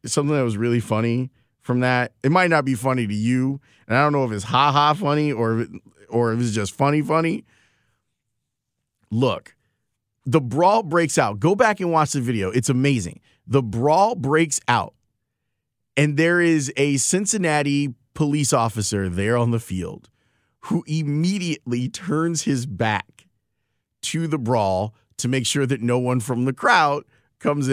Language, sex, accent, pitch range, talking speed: English, male, American, 120-165 Hz, 160 wpm